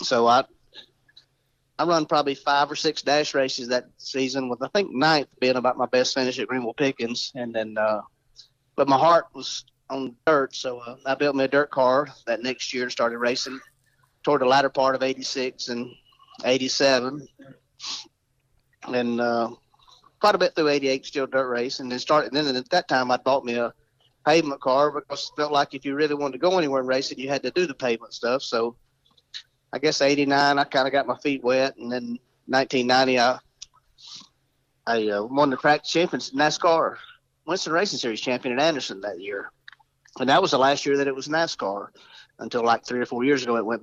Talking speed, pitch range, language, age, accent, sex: 205 wpm, 125-145 Hz, English, 40-59, American, male